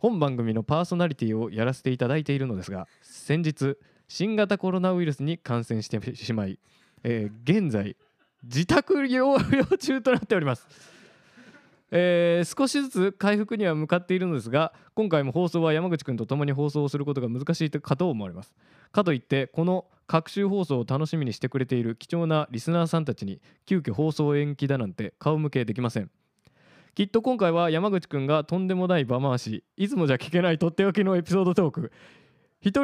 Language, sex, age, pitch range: Japanese, male, 20-39, 125-180 Hz